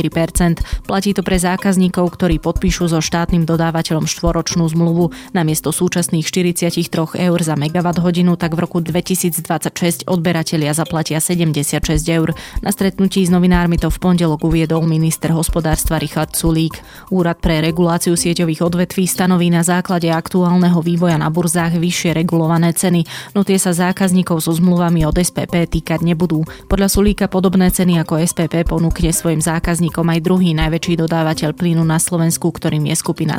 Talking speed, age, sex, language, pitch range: 145 wpm, 20-39, female, Slovak, 165-180 Hz